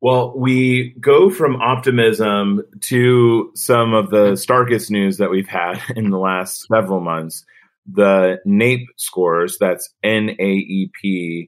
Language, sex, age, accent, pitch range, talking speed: English, male, 30-49, American, 90-110 Hz, 125 wpm